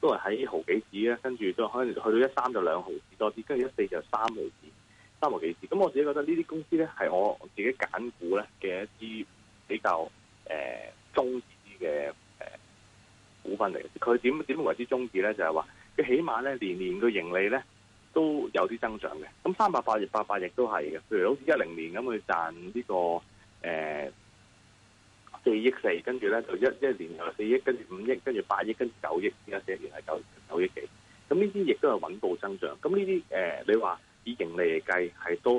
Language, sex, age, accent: Chinese, male, 30-49, native